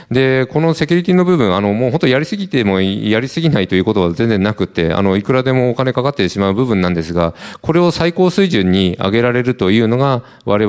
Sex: male